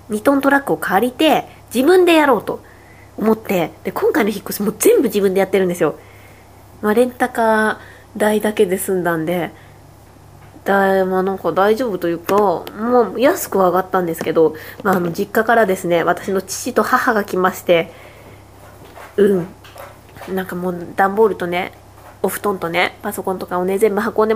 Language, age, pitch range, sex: Japanese, 20-39, 170-215 Hz, female